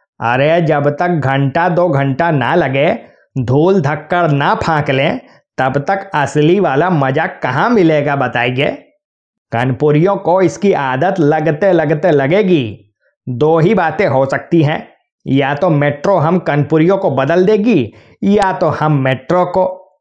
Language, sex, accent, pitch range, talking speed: Hindi, male, native, 140-180 Hz, 140 wpm